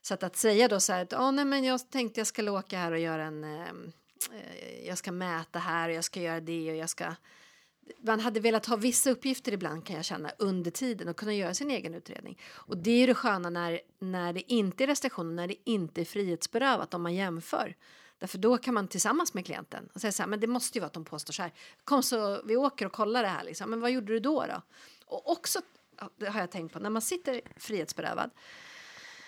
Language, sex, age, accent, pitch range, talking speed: Swedish, female, 40-59, native, 170-230 Hz, 240 wpm